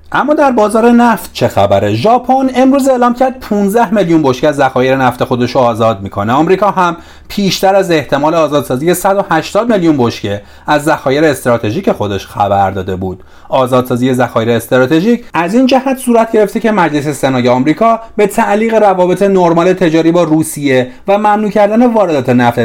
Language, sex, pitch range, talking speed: Persian, male, 125-210 Hz, 165 wpm